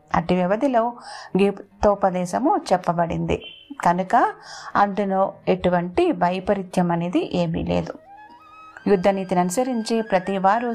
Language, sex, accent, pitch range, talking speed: English, female, Indian, 185-255 Hz, 130 wpm